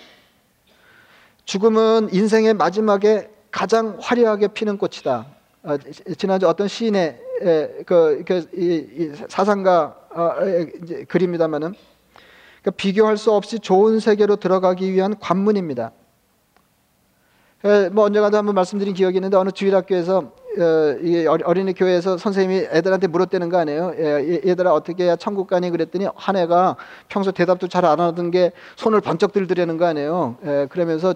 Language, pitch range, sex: Korean, 175-210 Hz, male